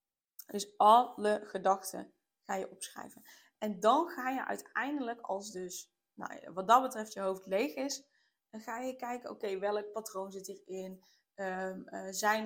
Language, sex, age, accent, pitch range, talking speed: Dutch, female, 20-39, Dutch, 190-220 Hz, 170 wpm